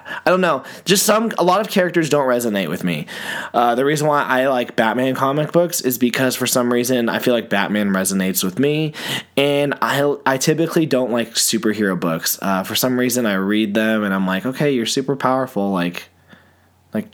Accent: American